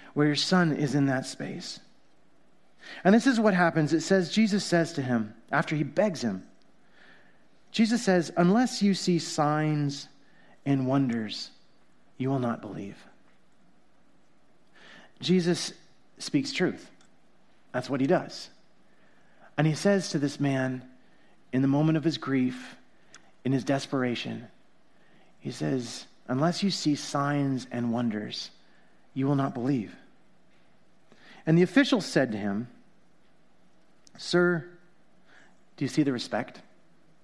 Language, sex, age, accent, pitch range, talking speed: English, male, 30-49, American, 125-175 Hz, 130 wpm